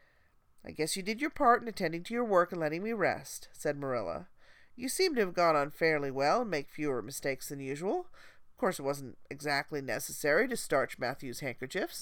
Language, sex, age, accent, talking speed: English, female, 40-59, American, 205 wpm